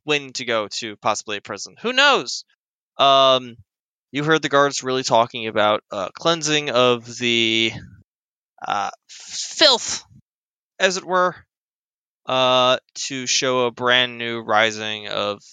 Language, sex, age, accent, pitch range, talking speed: English, male, 20-39, American, 110-130 Hz, 130 wpm